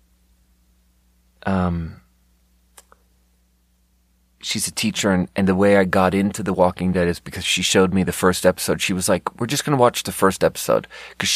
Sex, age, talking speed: male, 30-49, 175 wpm